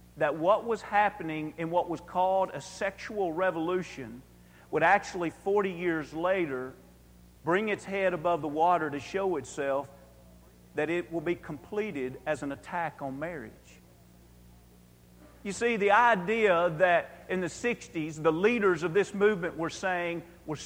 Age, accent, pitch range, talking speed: 50-69, American, 155-215 Hz, 150 wpm